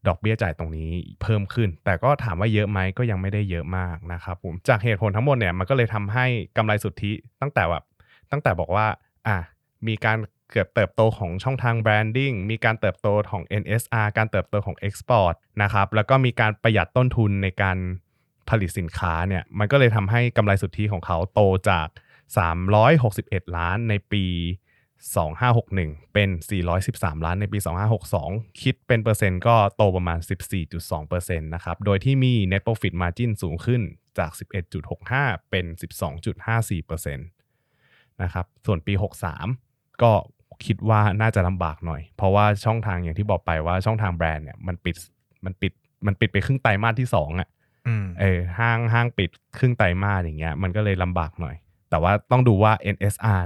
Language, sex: Thai, male